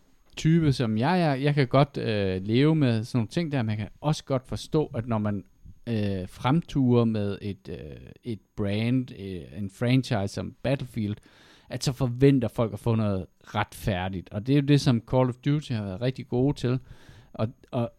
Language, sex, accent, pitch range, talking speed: Danish, male, native, 105-135 Hz, 195 wpm